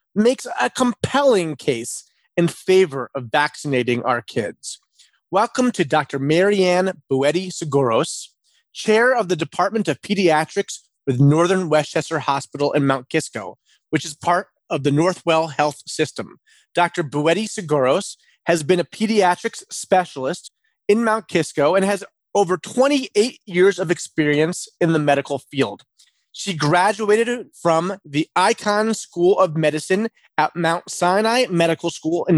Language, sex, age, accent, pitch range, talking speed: English, male, 30-49, American, 150-210 Hz, 130 wpm